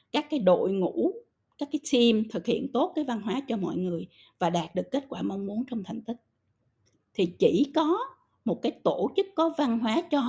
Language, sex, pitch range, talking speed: Vietnamese, female, 180-250 Hz, 215 wpm